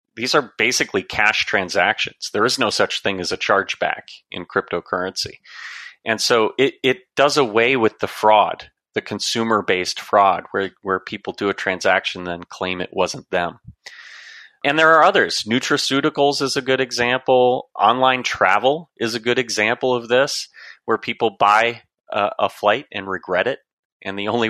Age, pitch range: 30-49, 100-130 Hz